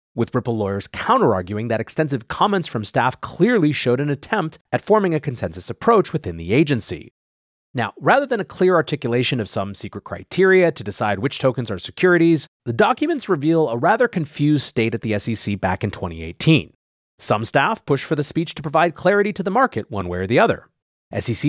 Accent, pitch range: American, 110-170 Hz